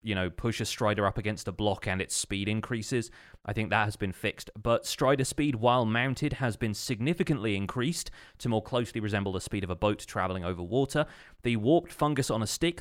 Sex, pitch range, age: male, 100-125 Hz, 30-49